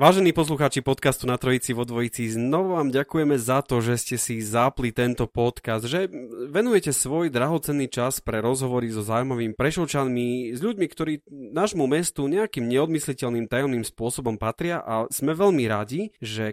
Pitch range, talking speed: 115-145 Hz, 155 wpm